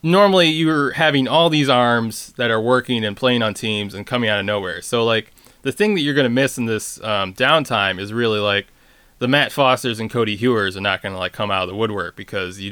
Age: 20-39